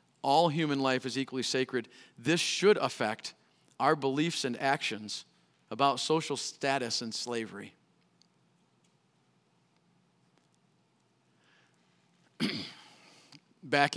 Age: 40-59